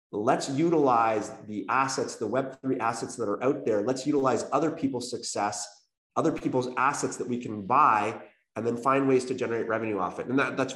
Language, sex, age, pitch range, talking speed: English, male, 30-49, 120-145 Hz, 190 wpm